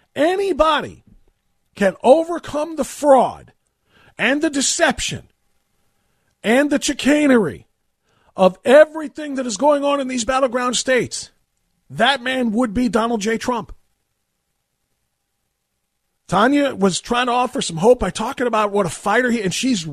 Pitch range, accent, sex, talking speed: 165-245 Hz, American, male, 135 wpm